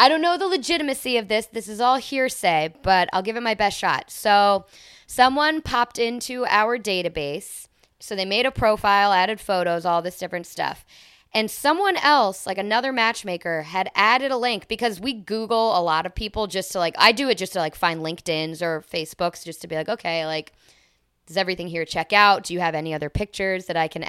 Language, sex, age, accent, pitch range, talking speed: English, female, 20-39, American, 170-235 Hz, 210 wpm